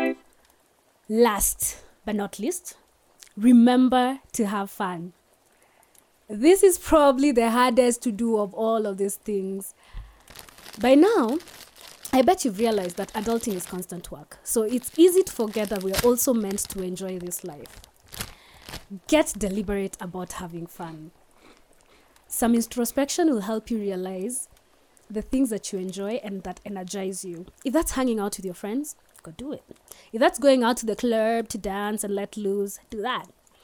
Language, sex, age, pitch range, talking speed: English, female, 20-39, 200-265 Hz, 155 wpm